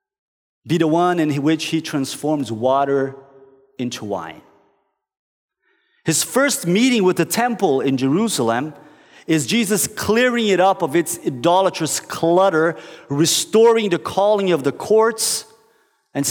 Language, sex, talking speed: English, male, 125 wpm